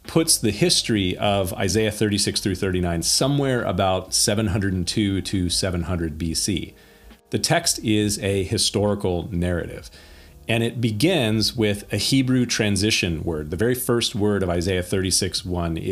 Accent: American